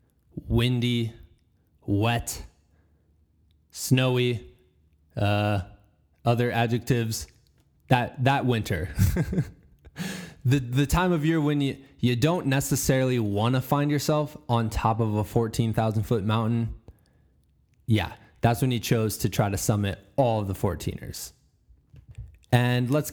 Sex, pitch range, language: male, 100-135 Hz, English